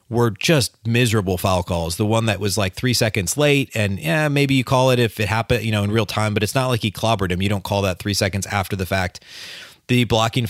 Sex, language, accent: male, English, American